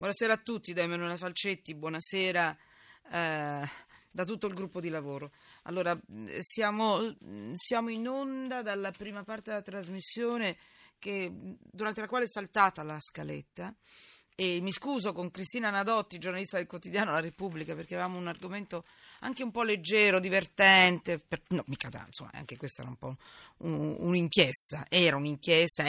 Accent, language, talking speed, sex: native, Italian, 145 wpm, female